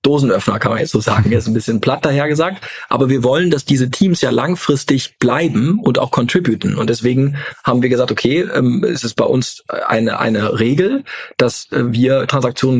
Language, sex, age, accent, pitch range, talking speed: German, male, 40-59, German, 115-140 Hz, 190 wpm